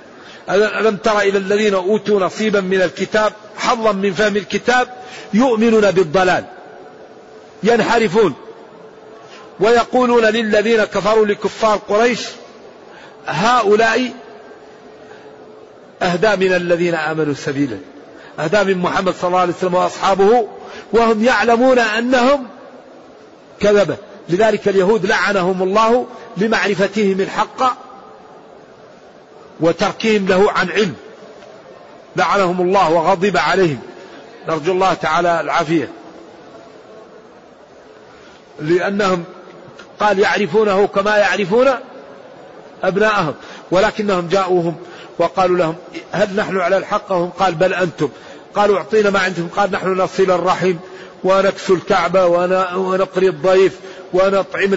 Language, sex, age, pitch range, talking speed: Arabic, male, 50-69, 180-215 Hz, 95 wpm